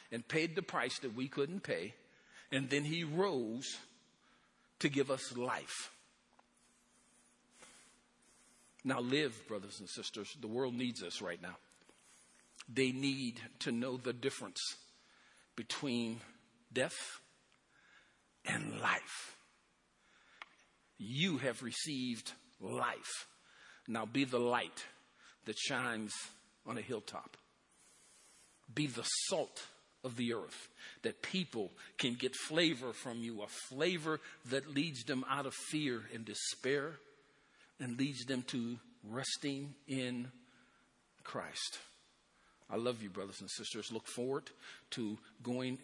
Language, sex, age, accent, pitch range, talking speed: English, male, 50-69, American, 115-140 Hz, 120 wpm